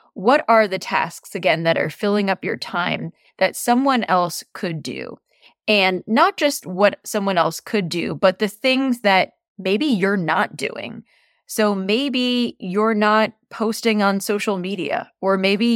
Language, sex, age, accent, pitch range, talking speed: English, female, 20-39, American, 175-220 Hz, 160 wpm